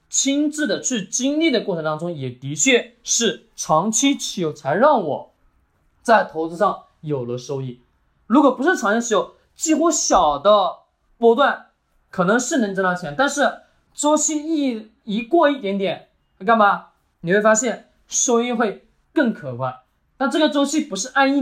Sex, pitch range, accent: male, 180-270 Hz, native